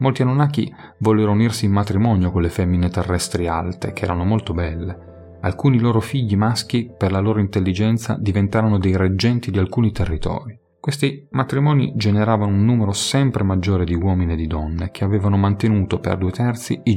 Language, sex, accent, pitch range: Italian, male, native, 95-115 Hz